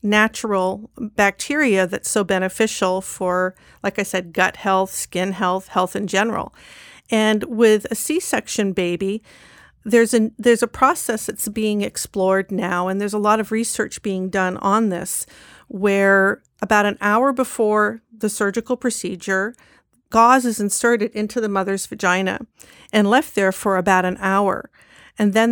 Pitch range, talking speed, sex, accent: 195-230 Hz, 150 wpm, female, American